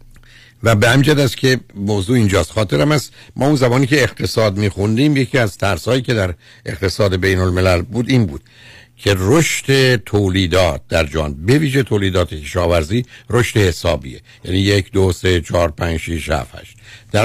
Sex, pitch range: male, 95-120 Hz